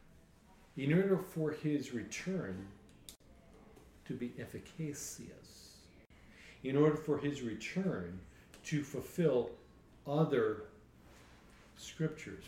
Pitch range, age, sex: 115-160 Hz, 50-69, male